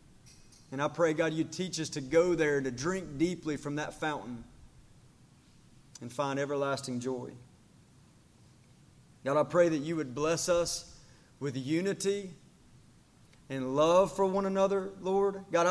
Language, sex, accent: English, male, American